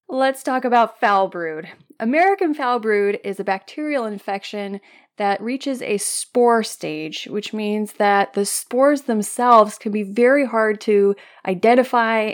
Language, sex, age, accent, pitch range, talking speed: English, female, 30-49, American, 195-230 Hz, 140 wpm